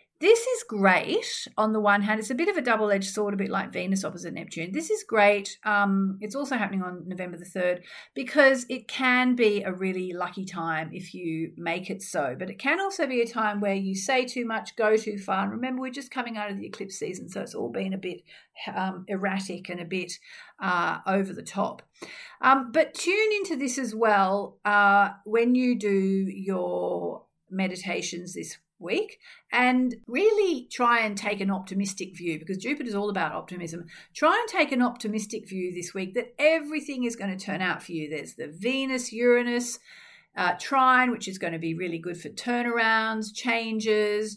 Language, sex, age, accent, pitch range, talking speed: English, female, 50-69, Australian, 190-250 Hz, 195 wpm